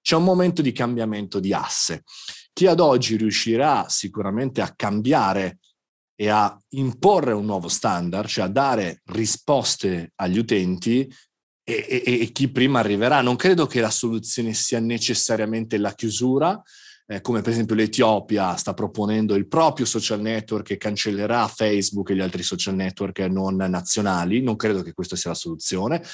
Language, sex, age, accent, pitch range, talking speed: Italian, male, 30-49, native, 105-125 Hz, 155 wpm